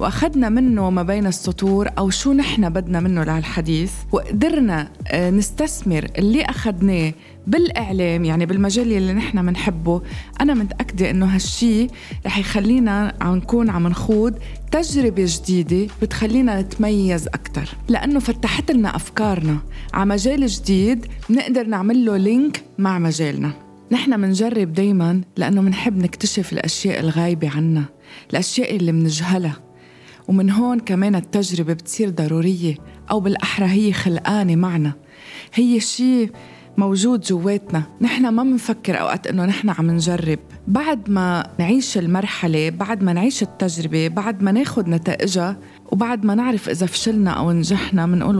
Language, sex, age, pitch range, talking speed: Arabic, female, 30-49, 175-225 Hz, 130 wpm